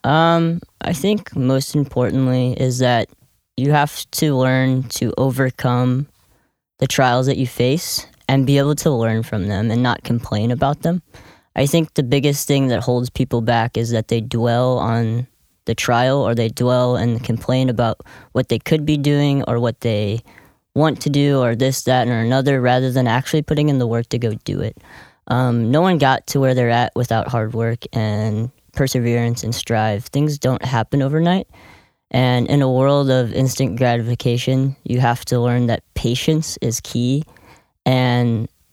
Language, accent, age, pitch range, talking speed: English, American, 20-39, 115-135 Hz, 180 wpm